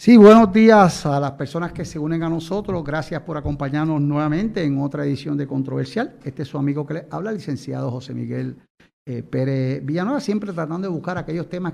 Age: 60-79